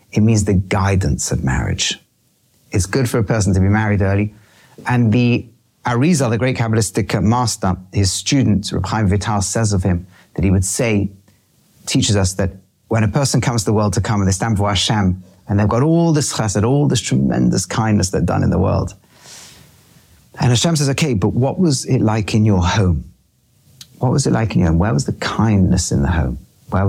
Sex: male